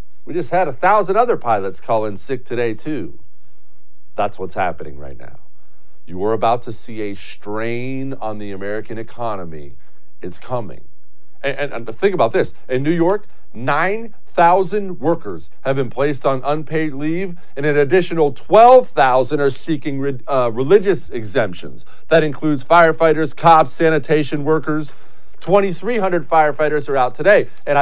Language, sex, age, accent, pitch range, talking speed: English, male, 40-59, American, 115-170 Hz, 150 wpm